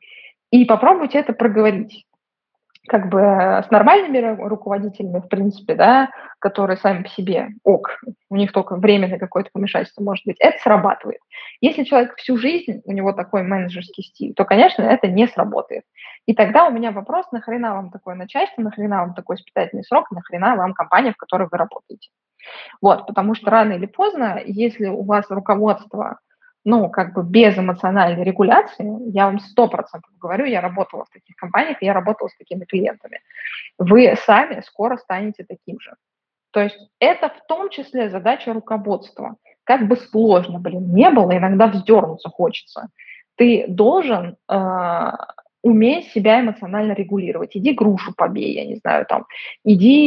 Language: Russian